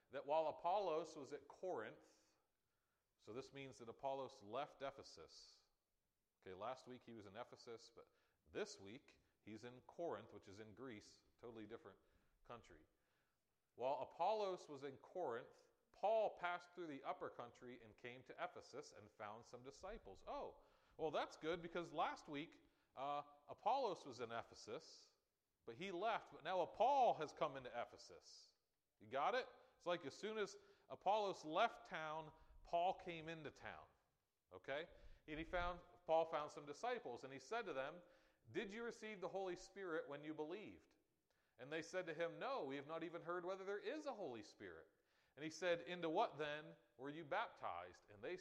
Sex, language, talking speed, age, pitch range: male, English, 170 wpm, 40-59, 130-195 Hz